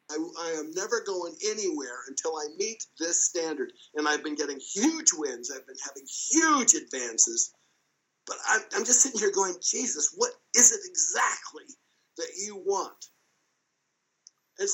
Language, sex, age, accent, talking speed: English, male, 50-69, American, 155 wpm